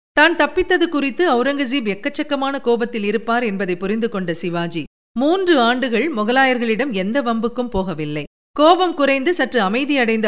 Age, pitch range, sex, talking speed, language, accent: 50-69, 200-280 Hz, female, 125 wpm, Tamil, native